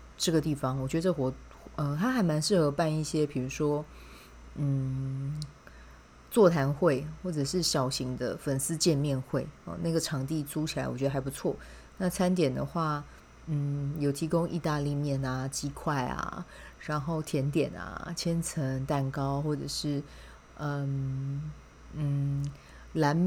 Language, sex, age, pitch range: Chinese, female, 30-49, 135-160 Hz